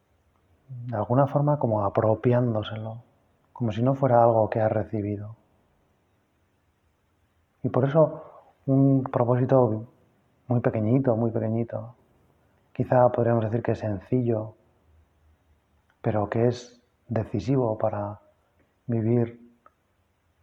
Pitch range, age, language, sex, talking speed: 95-120 Hz, 30-49, Spanish, male, 100 wpm